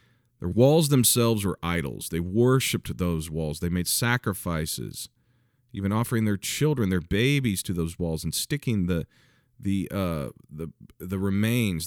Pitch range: 85-120 Hz